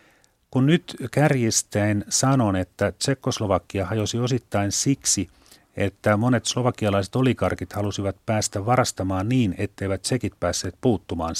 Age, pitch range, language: 40-59, 100-120 Hz, Finnish